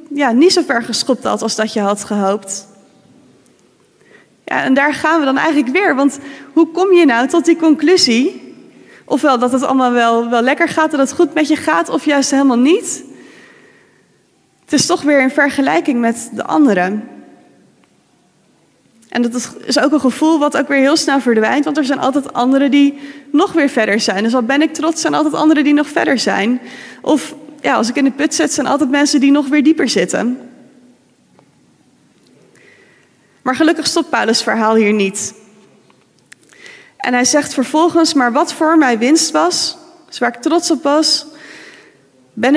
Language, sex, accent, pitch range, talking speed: Dutch, female, Dutch, 245-310 Hz, 180 wpm